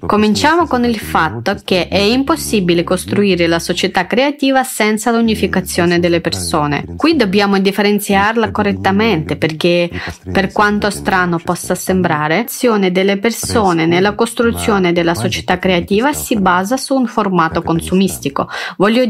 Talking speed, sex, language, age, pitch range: 125 wpm, female, Italian, 30-49, 185-240 Hz